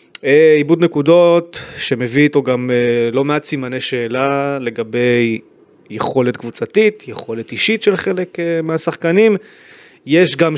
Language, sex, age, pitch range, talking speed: Hebrew, male, 30-49, 120-170 Hz, 110 wpm